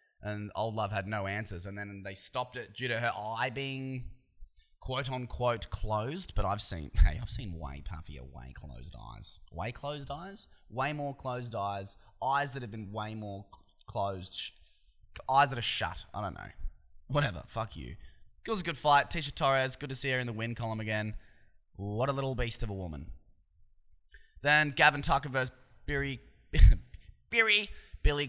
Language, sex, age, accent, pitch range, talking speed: English, male, 20-39, Australian, 95-130 Hz, 170 wpm